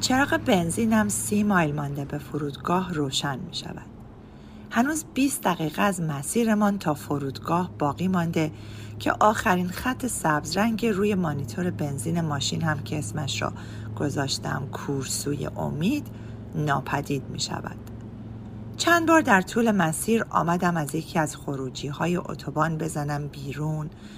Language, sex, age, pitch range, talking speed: Persian, female, 40-59, 145-220 Hz, 125 wpm